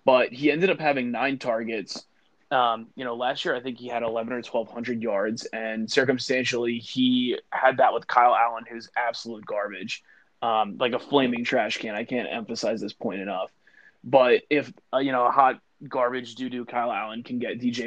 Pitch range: 115-125 Hz